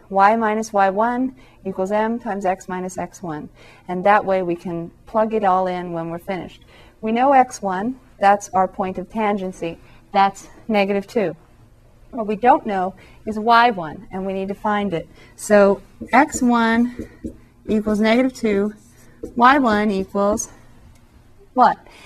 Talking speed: 140 wpm